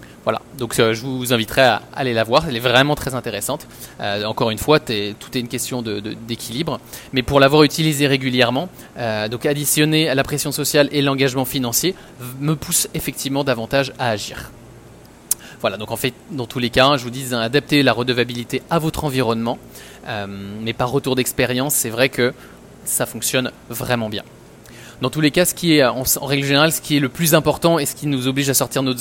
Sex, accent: male, French